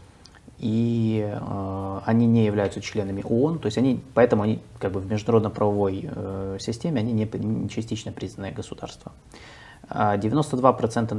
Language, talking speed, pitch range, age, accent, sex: Russian, 135 wpm, 105-125 Hz, 20-39, native, male